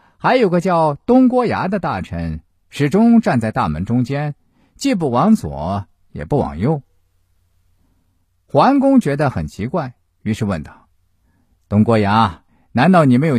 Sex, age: male, 50-69